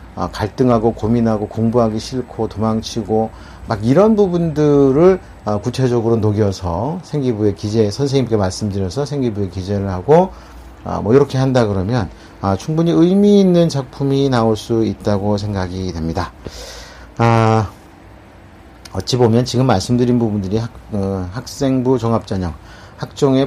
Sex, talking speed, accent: male, 115 wpm, Korean